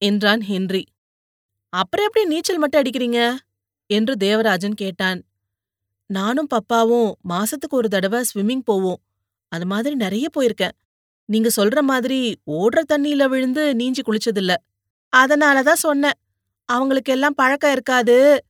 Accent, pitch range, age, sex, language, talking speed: native, 195-260 Hz, 30-49, female, Tamil, 105 wpm